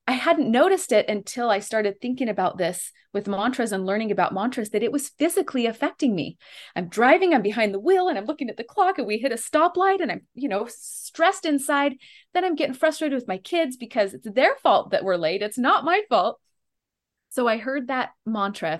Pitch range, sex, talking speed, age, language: 190-270 Hz, female, 215 wpm, 30-49, English